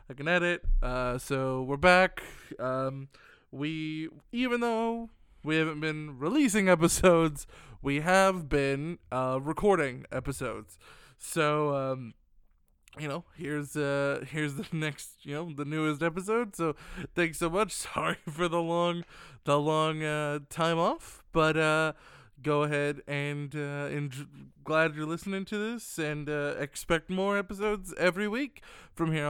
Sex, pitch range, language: male, 140-180 Hz, English